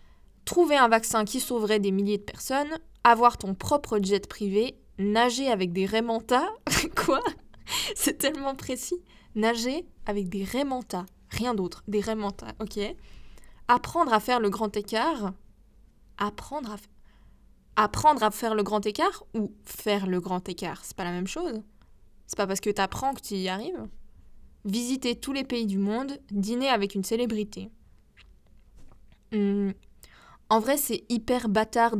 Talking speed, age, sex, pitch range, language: 150 wpm, 20-39, female, 195-240 Hz, French